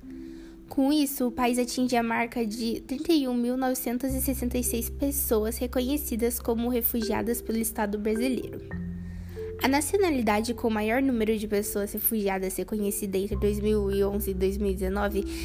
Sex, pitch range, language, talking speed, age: female, 195-250 Hz, Portuguese, 115 wpm, 10-29